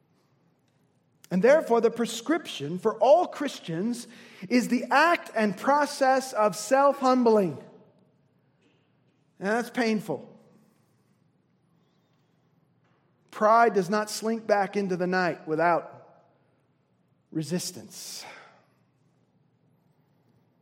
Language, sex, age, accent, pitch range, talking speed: English, male, 40-59, American, 155-225 Hz, 80 wpm